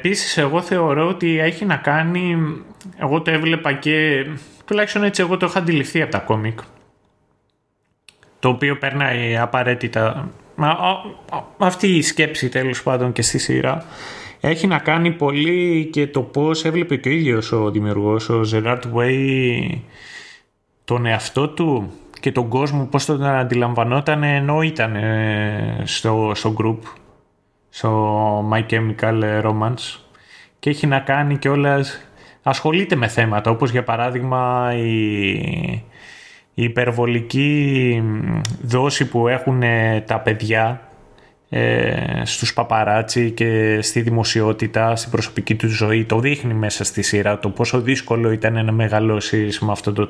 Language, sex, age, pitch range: Greek, male, 20-39, 110-145 Hz